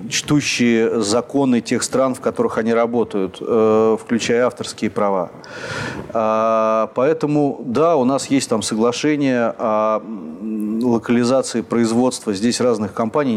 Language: Russian